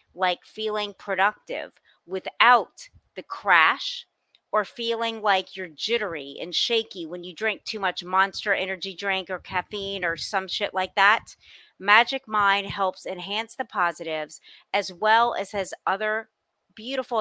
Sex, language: female, English